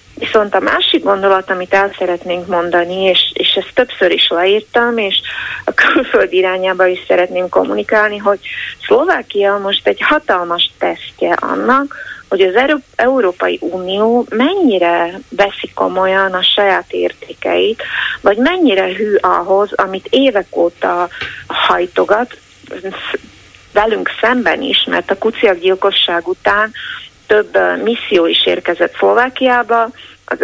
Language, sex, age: Hungarian, female, 30-49